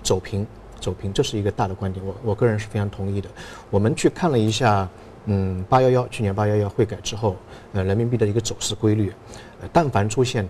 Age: 50-69